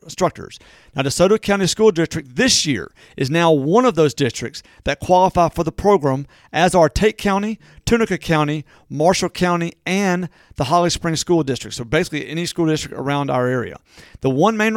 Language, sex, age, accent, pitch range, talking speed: English, male, 50-69, American, 145-185 Hz, 180 wpm